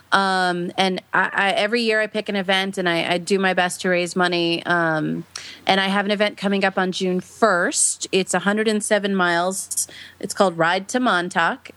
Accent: American